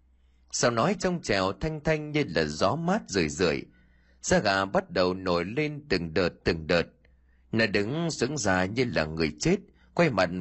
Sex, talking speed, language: male, 185 wpm, Vietnamese